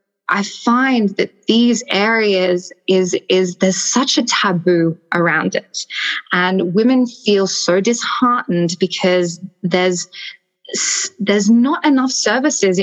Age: 10-29